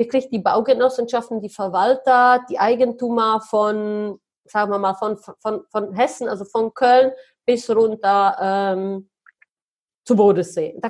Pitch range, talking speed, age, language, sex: 205-265 Hz, 130 wpm, 30-49, German, female